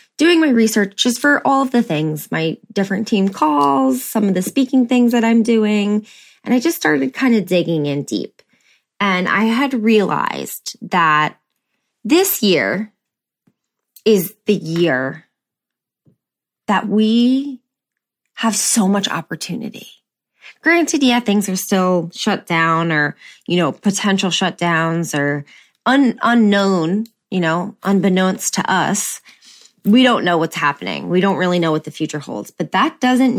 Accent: American